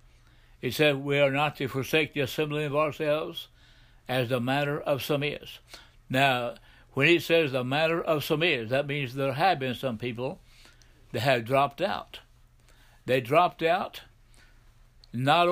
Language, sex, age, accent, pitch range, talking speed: English, male, 60-79, American, 125-150 Hz, 160 wpm